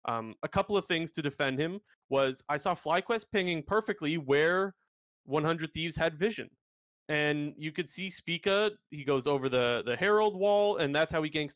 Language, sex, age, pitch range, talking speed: English, male, 30-49, 135-175 Hz, 185 wpm